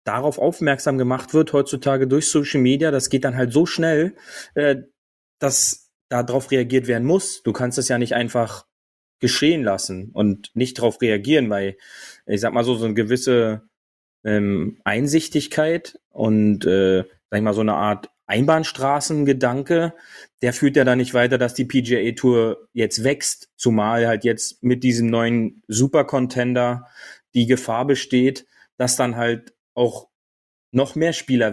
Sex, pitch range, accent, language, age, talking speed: male, 110-140 Hz, German, German, 30-49, 150 wpm